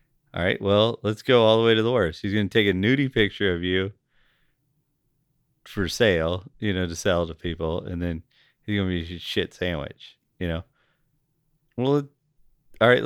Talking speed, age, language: 195 wpm, 40-59, English